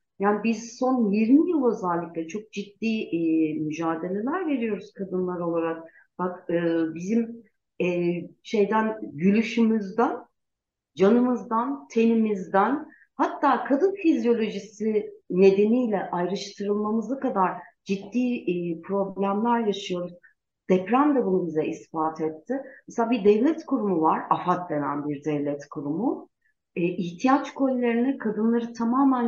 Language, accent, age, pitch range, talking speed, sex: Turkish, native, 60-79, 175-230 Hz, 105 wpm, female